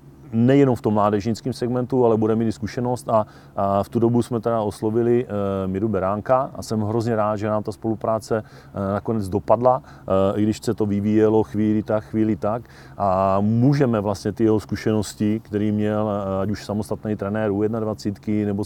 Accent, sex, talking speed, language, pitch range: native, male, 165 wpm, Czech, 100-115 Hz